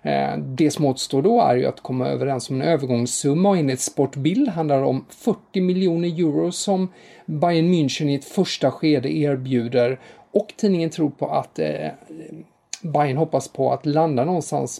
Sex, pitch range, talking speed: male, 135-175 Hz, 160 wpm